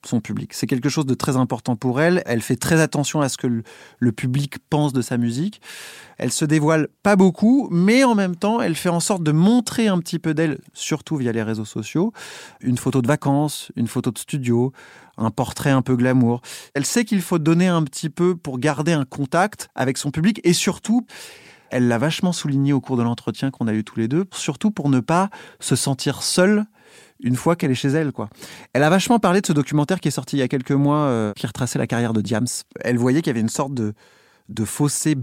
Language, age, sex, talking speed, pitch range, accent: French, 30-49, male, 235 wpm, 130-175 Hz, French